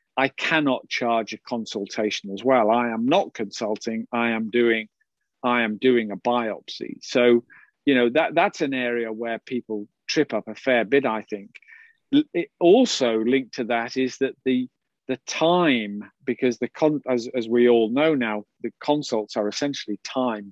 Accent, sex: British, male